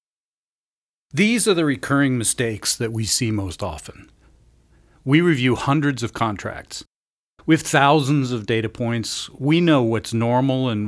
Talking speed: 140 wpm